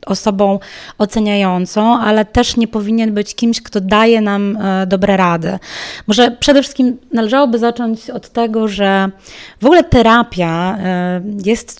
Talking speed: 125 wpm